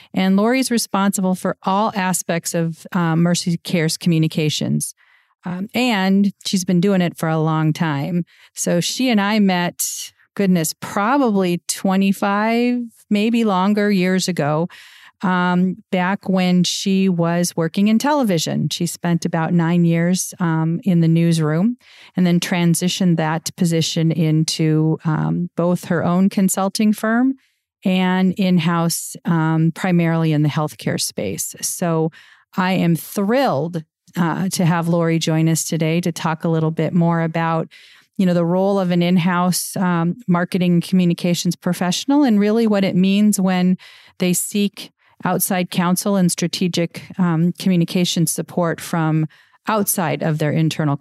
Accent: American